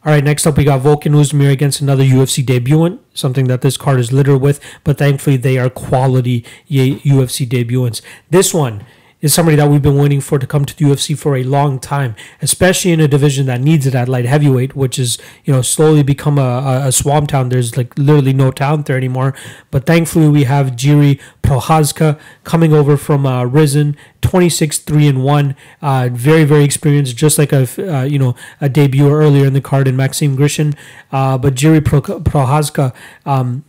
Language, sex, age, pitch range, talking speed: English, male, 30-49, 130-150 Hz, 200 wpm